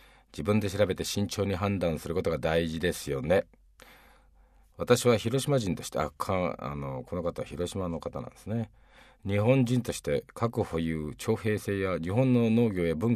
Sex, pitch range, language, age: male, 80-120 Hz, Japanese, 50-69